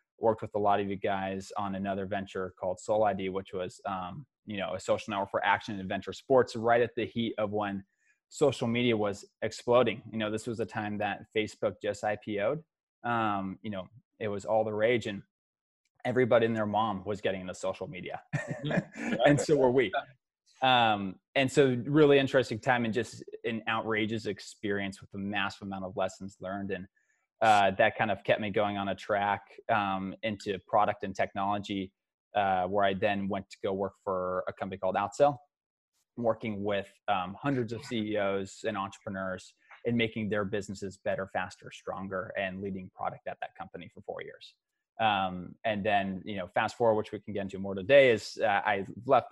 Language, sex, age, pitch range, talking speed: English, male, 20-39, 95-115 Hz, 190 wpm